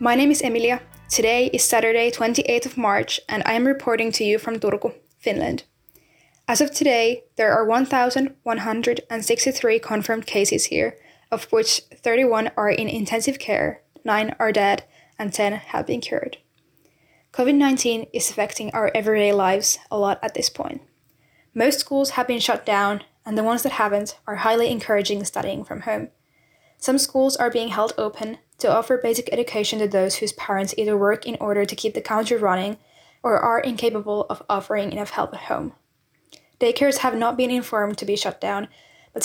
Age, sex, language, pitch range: 10-29, female, English, 210-245 Hz